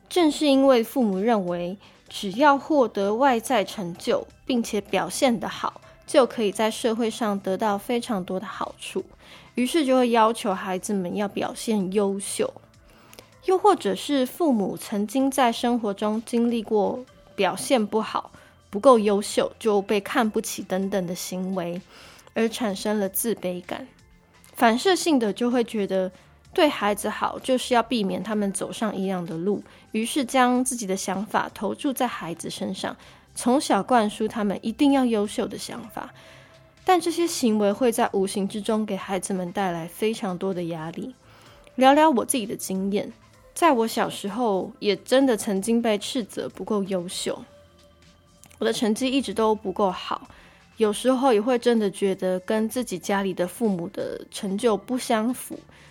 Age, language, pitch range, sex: 20-39, Chinese, 195-250 Hz, female